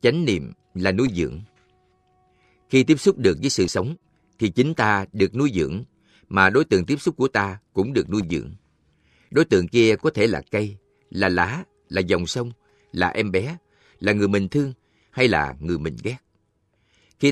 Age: 60-79